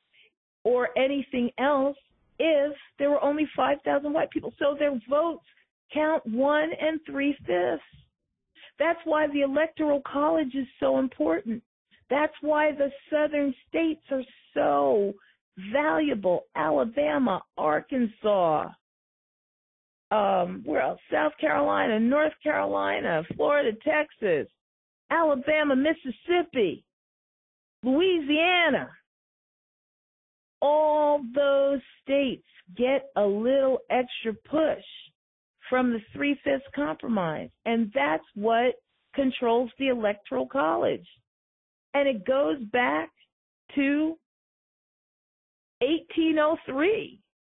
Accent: American